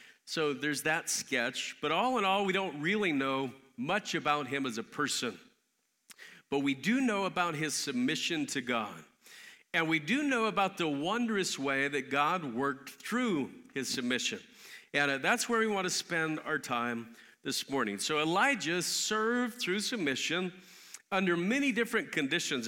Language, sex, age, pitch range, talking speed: English, male, 50-69, 145-205 Hz, 160 wpm